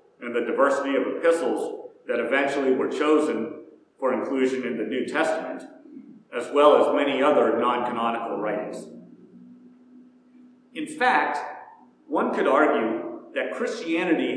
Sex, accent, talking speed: male, American, 120 wpm